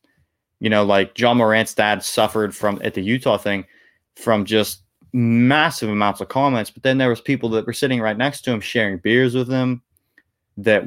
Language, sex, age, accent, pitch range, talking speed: English, male, 20-39, American, 105-125 Hz, 195 wpm